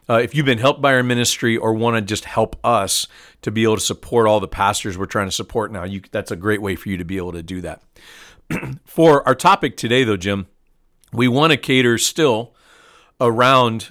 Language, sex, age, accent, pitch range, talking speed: English, male, 40-59, American, 100-125 Hz, 225 wpm